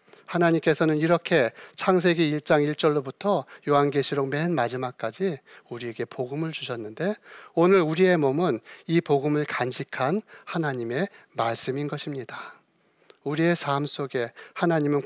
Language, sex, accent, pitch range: Korean, male, native, 130-165 Hz